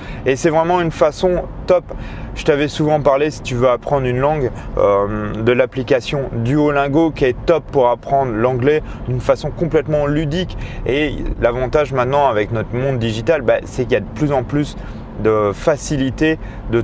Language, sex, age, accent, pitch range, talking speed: French, male, 30-49, French, 110-145 Hz, 175 wpm